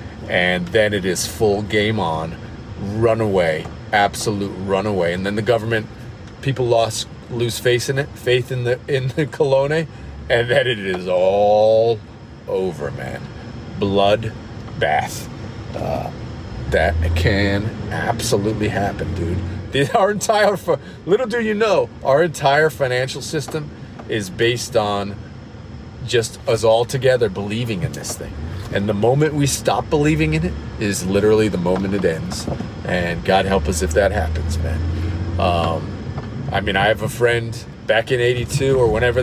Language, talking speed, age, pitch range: English, 145 wpm, 40-59, 100-130 Hz